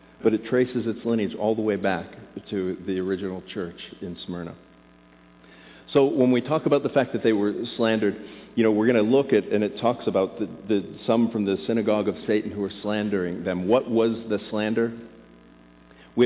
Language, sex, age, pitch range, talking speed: English, male, 50-69, 90-125 Hz, 200 wpm